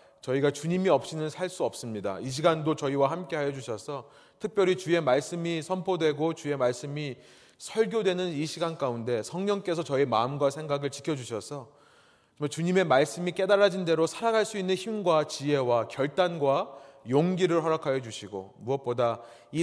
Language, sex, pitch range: Korean, male, 130-175 Hz